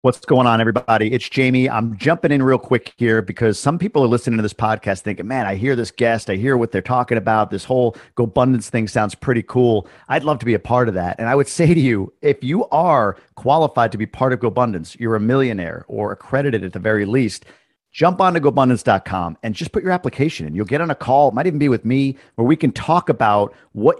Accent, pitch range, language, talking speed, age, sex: American, 110-140 Hz, English, 245 wpm, 50-69, male